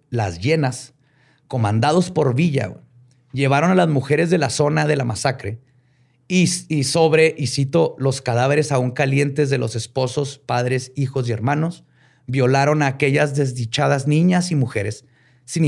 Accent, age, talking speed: Mexican, 30-49, 150 wpm